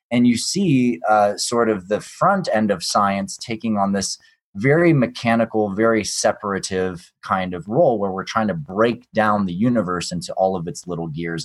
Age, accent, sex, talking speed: 20-39, American, male, 185 wpm